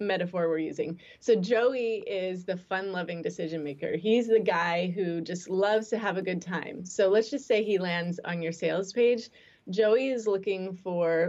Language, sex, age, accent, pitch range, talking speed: English, female, 20-39, American, 175-215 Hz, 190 wpm